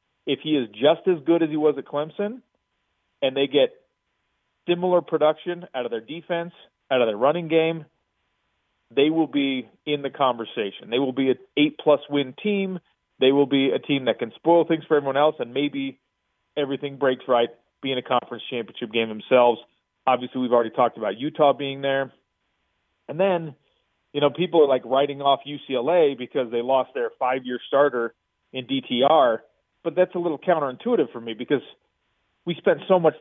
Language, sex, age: English, male, 30-49